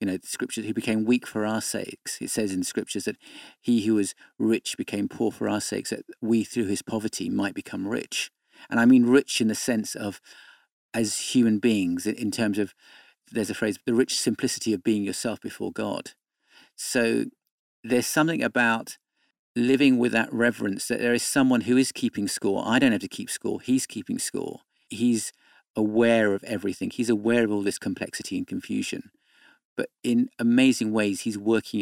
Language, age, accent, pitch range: English, 50-69, British, 110-130 Hz